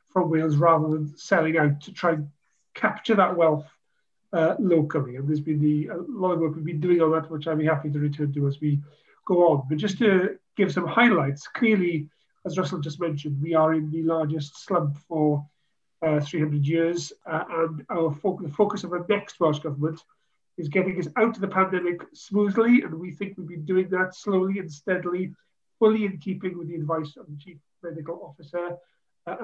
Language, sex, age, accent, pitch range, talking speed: English, male, 40-59, British, 150-185 Hz, 200 wpm